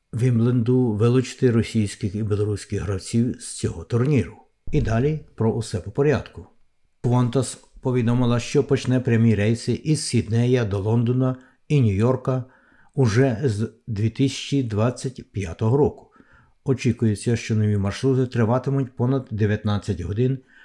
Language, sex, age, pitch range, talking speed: Ukrainian, male, 60-79, 110-130 Hz, 115 wpm